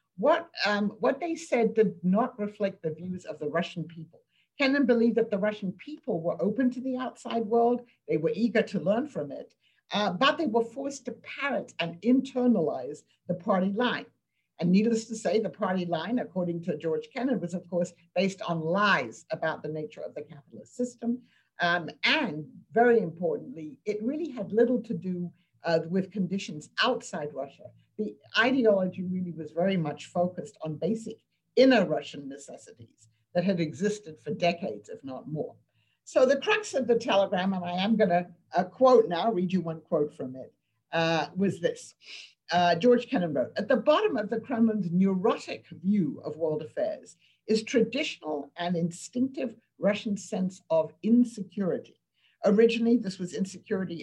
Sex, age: female, 60-79